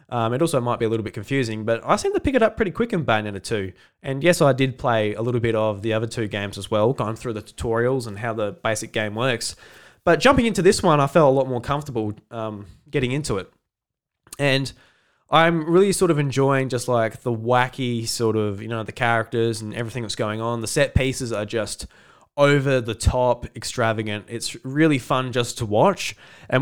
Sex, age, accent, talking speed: male, 20-39, Australian, 215 wpm